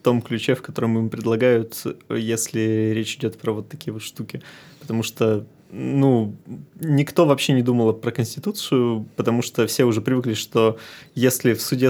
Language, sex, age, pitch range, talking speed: Russian, male, 20-39, 115-145 Hz, 165 wpm